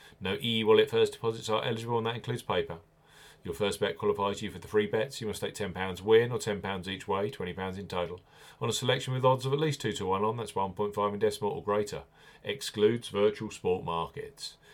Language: English